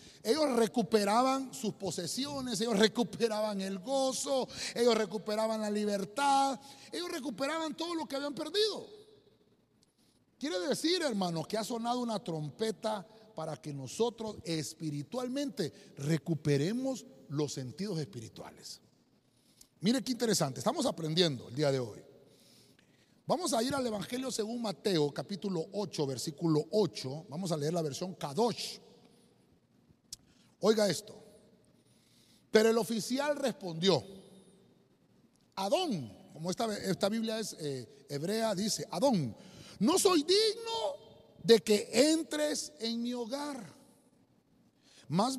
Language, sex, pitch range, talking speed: Spanish, male, 180-255 Hz, 115 wpm